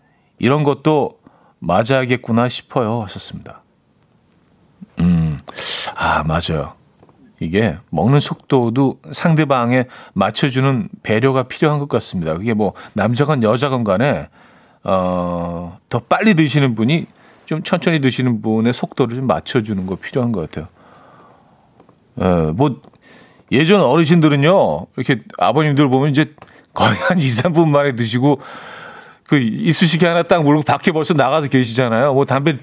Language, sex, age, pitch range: Korean, male, 40-59, 110-155 Hz